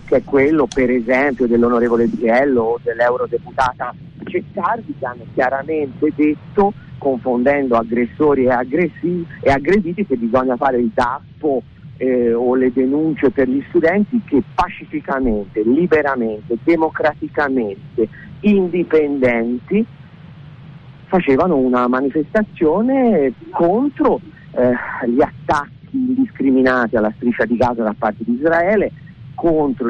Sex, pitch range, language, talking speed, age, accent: male, 125-170 Hz, Italian, 105 wpm, 50-69, native